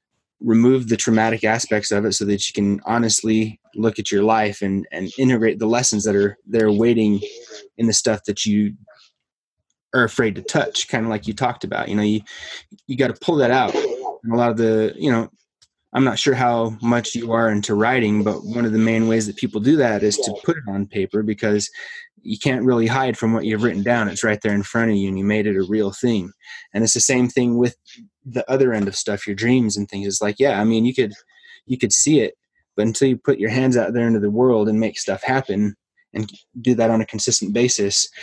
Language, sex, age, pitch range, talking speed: English, male, 20-39, 105-125 Hz, 240 wpm